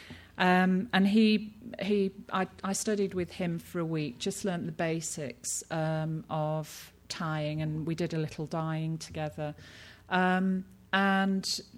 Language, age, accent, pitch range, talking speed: English, 40-59, British, 155-190 Hz, 145 wpm